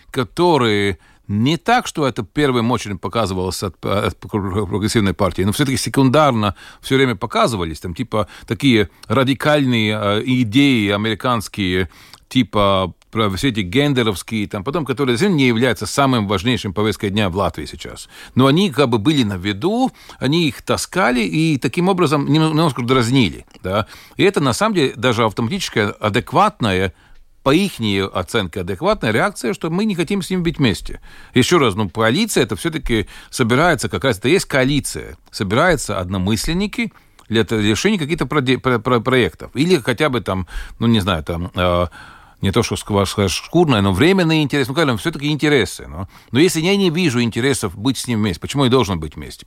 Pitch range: 105-150 Hz